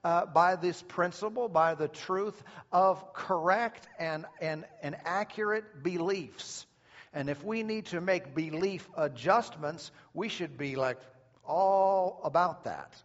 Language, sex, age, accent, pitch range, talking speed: English, male, 50-69, American, 140-180 Hz, 135 wpm